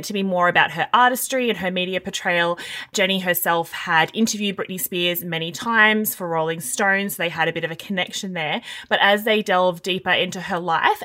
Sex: female